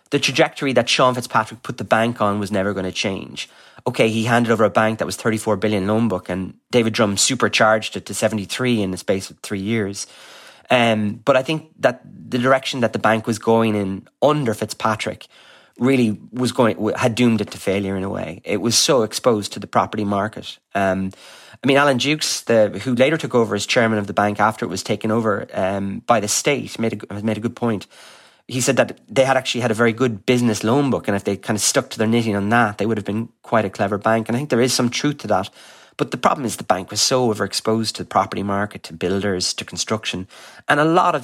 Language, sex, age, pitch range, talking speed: English, male, 30-49, 105-125 Hz, 240 wpm